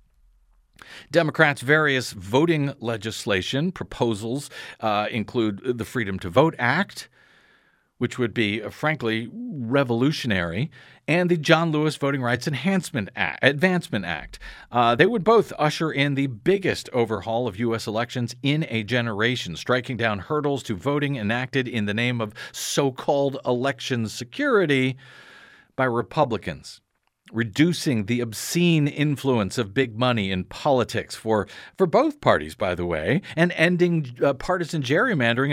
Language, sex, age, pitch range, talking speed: English, male, 40-59, 115-155 Hz, 130 wpm